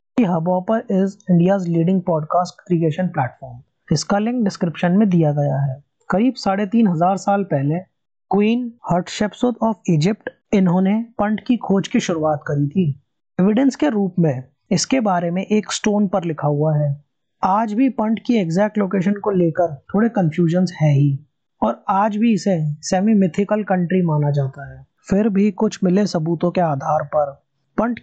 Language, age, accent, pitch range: Hindi, 20-39, native, 155-205 Hz